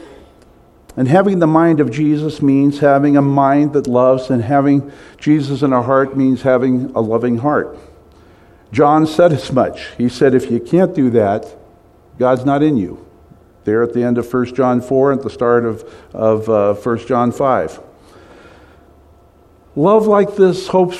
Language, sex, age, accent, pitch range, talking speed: English, male, 50-69, American, 115-155 Hz, 170 wpm